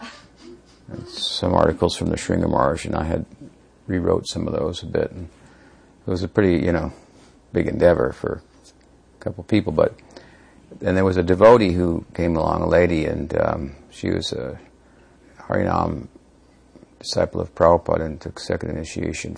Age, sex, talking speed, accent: 50-69, male, 160 wpm, American